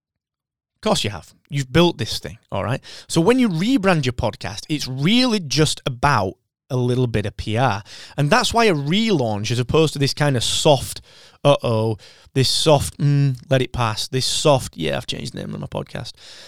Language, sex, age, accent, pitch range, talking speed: English, male, 20-39, British, 110-150 Hz, 195 wpm